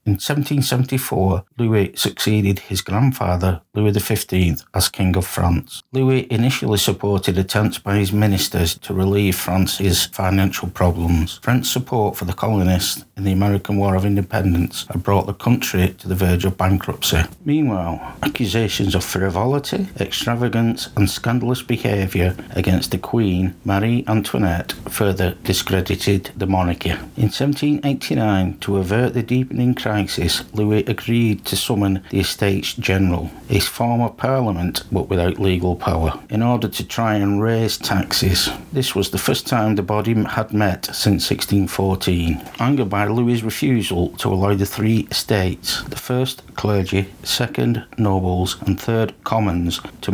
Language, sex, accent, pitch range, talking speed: English, male, British, 95-115 Hz, 140 wpm